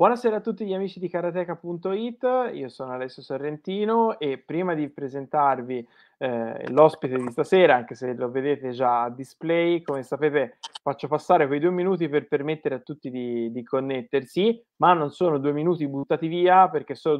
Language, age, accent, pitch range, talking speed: Italian, 30-49, native, 130-165 Hz, 170 wpm